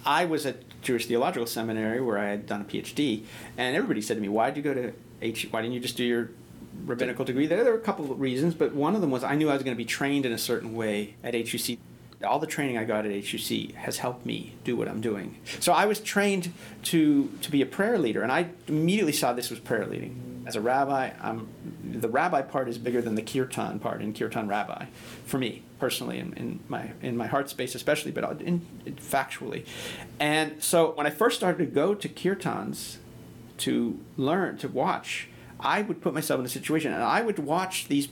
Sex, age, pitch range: male, 40-59, 115-155 Hz